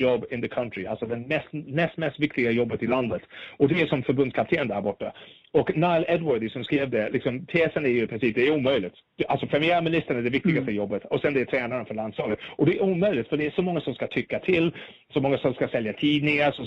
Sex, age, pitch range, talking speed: male, 30-49, 120-160 Hz, 240 wpm